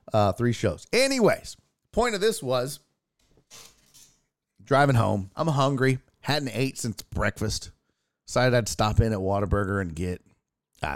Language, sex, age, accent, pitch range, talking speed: English, male, 40-59, American, 105-150 Hz, 135 wpm